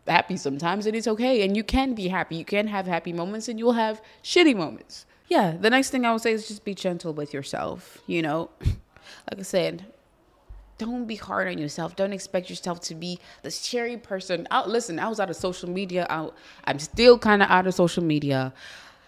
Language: English